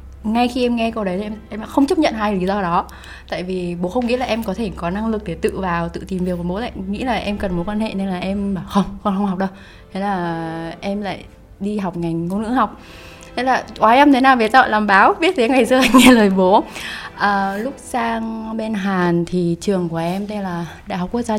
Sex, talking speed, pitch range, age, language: female, 265 wpm, 190-230 Hz, 20-39, Vietnamese